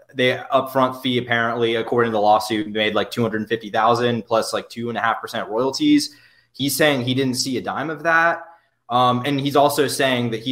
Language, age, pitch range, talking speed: English, 20-39, 110-130 Hz, 200 wpm